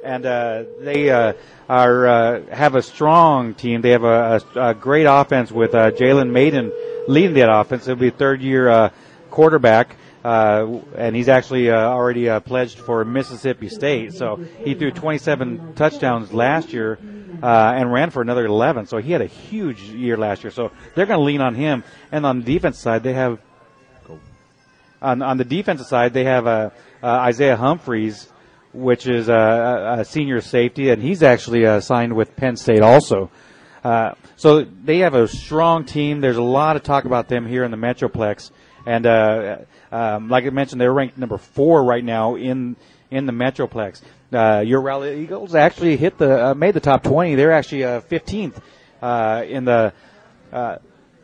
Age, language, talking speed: 40-59, English, 180 wpm